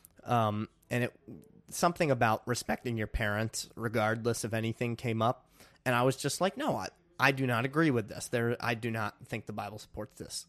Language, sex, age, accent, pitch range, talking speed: English, male, 30-49, American, 115-145 Hz, 200 wpm